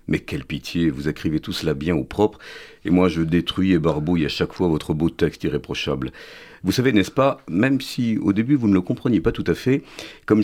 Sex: male